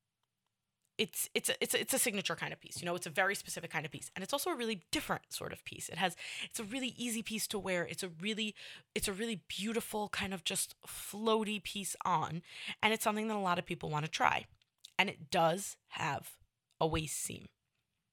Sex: female